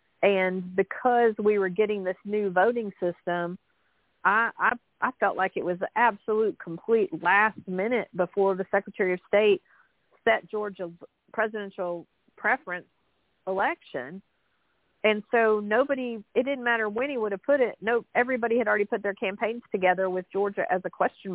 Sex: female